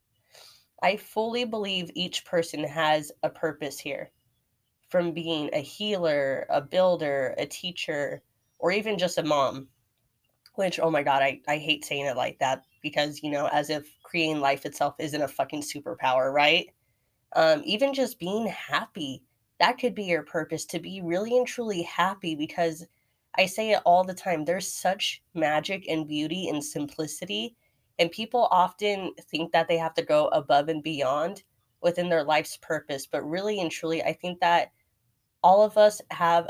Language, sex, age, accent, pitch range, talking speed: English, female, 20-39, American, 150-185 Hz, 170 wpm